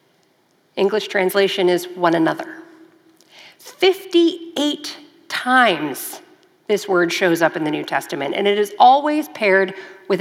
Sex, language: female, English